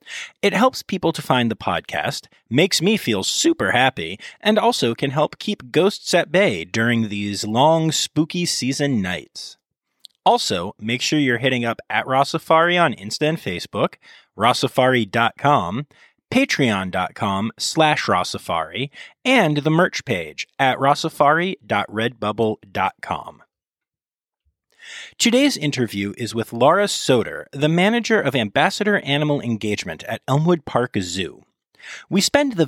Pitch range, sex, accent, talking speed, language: 115-185 Hz, male, American, 125 wpm, English